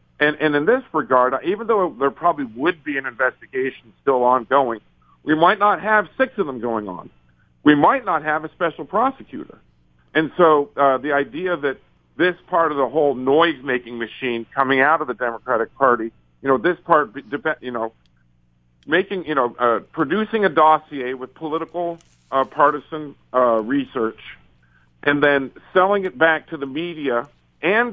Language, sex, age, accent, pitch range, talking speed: English, male, 50-69, American, 125-170 Hz, 170 wpm